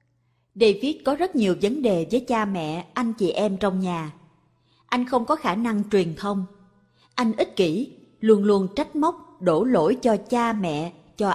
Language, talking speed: Vietnamese, 180 wpm